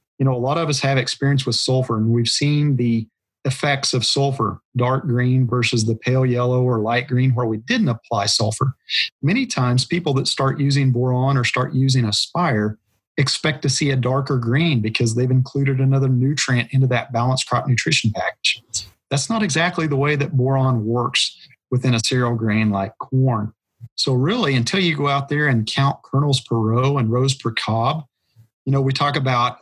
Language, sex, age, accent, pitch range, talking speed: English, male, 40-59, American, 120-140 Hz, 190 wpm